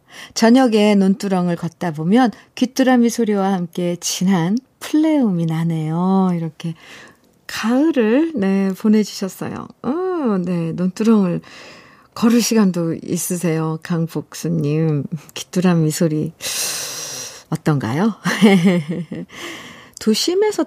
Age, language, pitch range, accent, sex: 50-69, Korean, 165-230 Hz, native, female